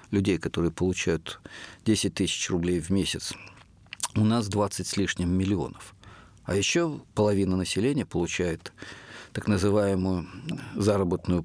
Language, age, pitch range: Russian, 50-69, 90-110 Hz